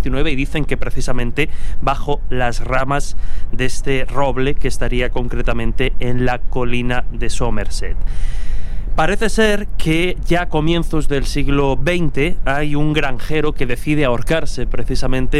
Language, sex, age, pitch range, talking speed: Spanish, male, 20-39, 125-145 Hz, 135 wpm